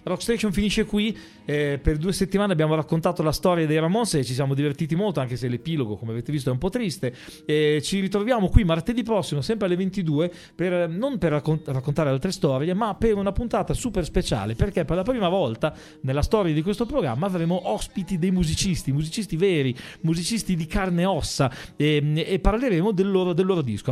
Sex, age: male, 30-49